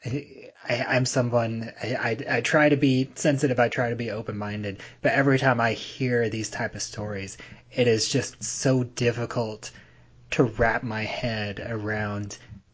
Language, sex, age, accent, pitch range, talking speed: English, male, 30-49, American, 105-120 Hz, 160 wpm